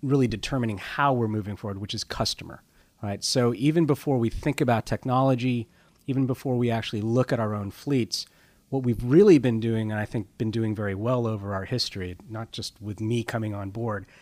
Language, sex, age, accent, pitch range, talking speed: English, male, 40-59, American, 105-140 Hz, 205 wpm